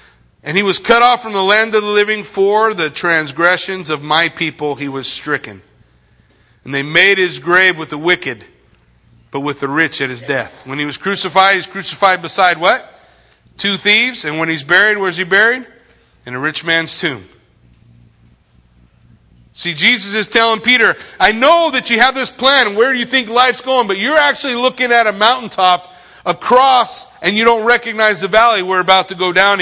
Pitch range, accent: 170-255 Hz, American